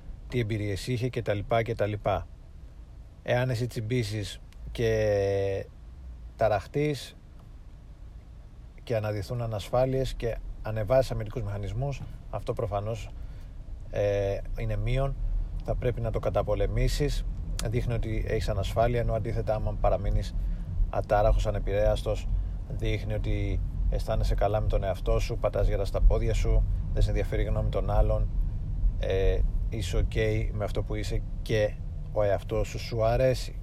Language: Greek